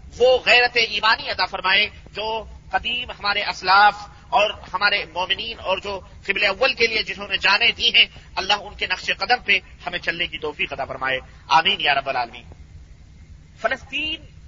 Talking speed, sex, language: 165 wpm, male, Urdu